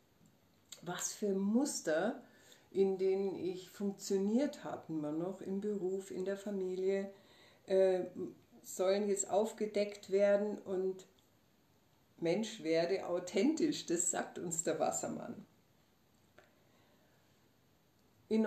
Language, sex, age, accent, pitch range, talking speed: German, female, 60-79, German, 185-220 Hz, 95 wpm